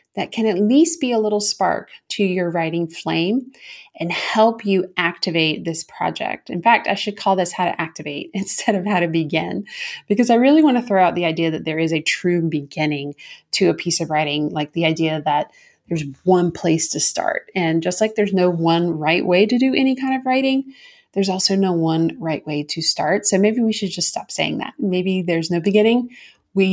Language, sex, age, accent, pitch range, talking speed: English, female, 30-49, American, 170-220 Hz, 215 wpm